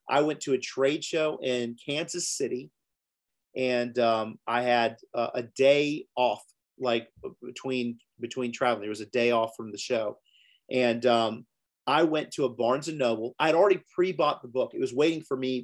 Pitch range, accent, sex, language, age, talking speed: 120-145 Hz, American, male, English, 40-59, 190 wpm